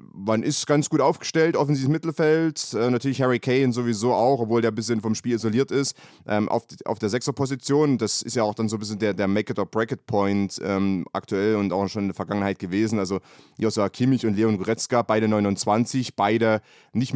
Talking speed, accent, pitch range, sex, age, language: 205 wpm, German, 105-125 Hz, male, 30-49, German